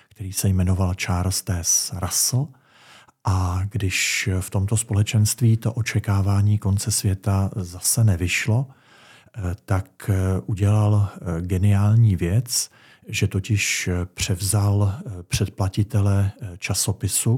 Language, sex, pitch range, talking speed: Czech, male, 95-110 Hz, 90 wpm